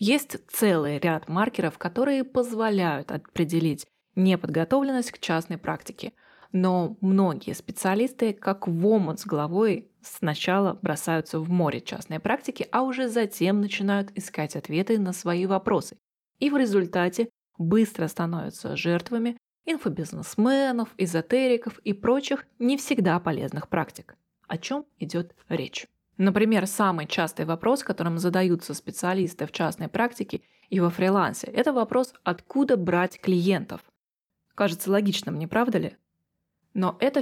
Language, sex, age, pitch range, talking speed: Russian, female, 20-39, 175-235 Hz, 125 wpm